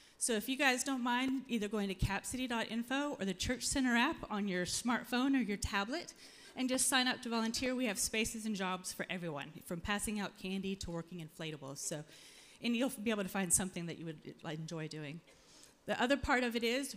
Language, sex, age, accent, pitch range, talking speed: English, female, 30-49, American, 190-255 Hz, 210 wpm